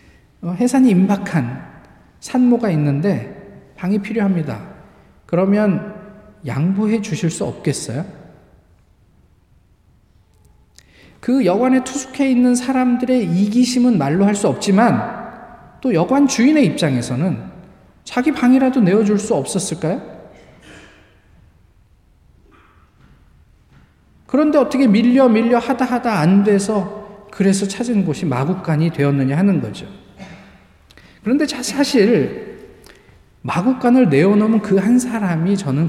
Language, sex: Korean, male